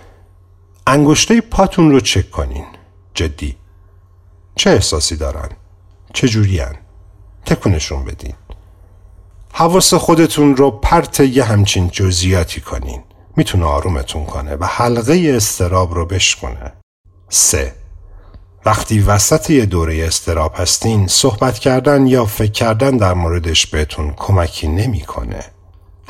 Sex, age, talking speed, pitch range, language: male, 50-69, 110 wpm, 90-115 Hz, Persian